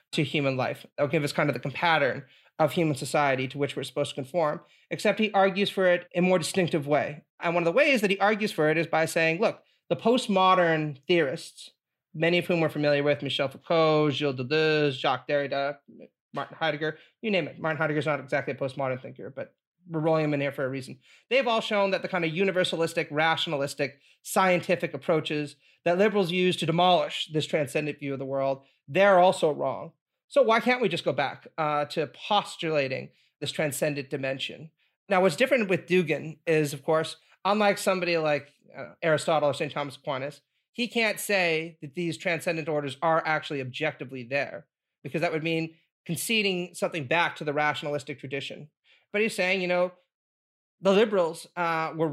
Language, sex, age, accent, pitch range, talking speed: English, male, 30-49, American, 145-180 Hz, 190 wpm